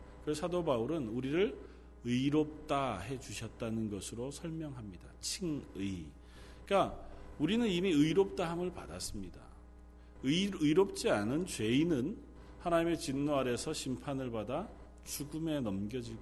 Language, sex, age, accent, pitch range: Korean, male, 40-59, native, 100-155 Hz